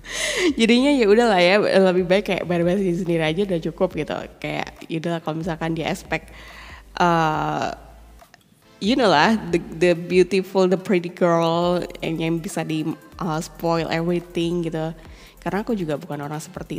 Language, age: Indonesian, 20-39